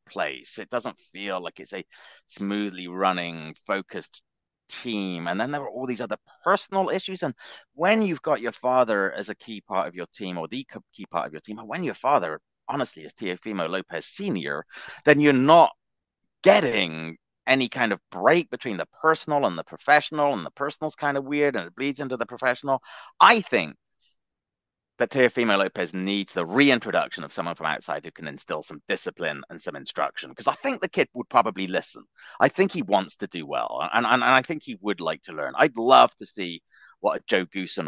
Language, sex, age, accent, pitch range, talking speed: English, male, 30-49, British, 95-150 Hz, 205 wpm